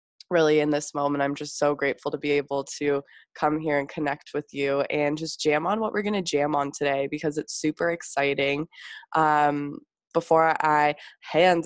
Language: English